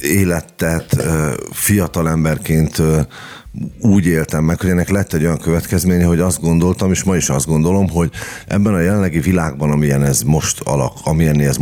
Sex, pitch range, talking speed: male, 70-85 Hz, 160 wpm